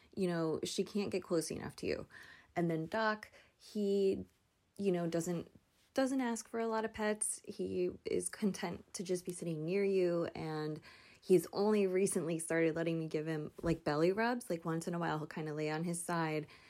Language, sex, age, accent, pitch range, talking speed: English, female, 20-39, American, 160-205 Hz, 200 wpm